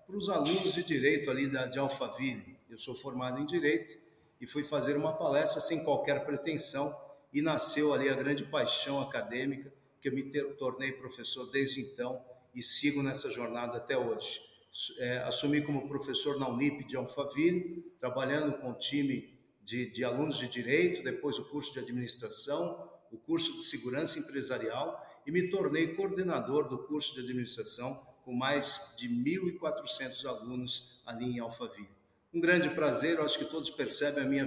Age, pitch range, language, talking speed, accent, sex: 50-69, 130-175 Hz, Portuguese, 160 wpm, Brazilian, male